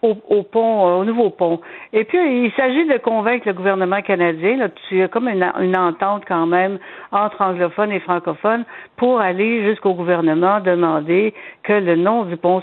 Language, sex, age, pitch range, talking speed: French, female, 60-79, 180-220 Hz, 175 wpm